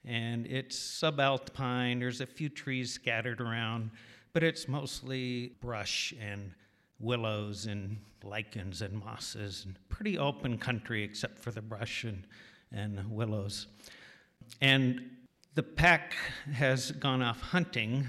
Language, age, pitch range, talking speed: English, 50-69, 110-130 Hz, 125 wpm